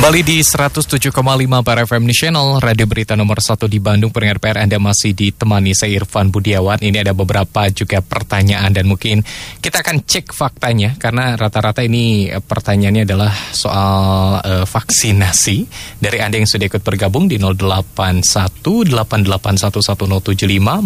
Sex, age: male, 20-39